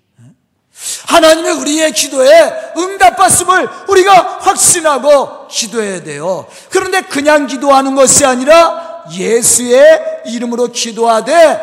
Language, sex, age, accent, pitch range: Korean, male, 40-59, native, 240-325 Hz